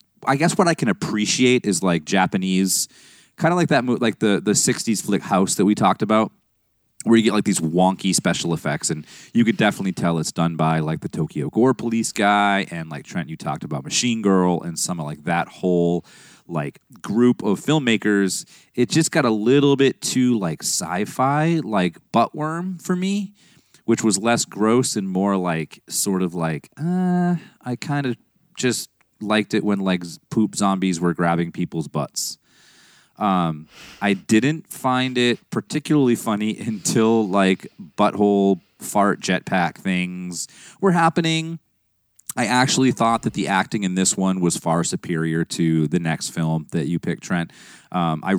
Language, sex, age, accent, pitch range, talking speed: English, male, 30-49, American, 90-125 Hz, 170 wpm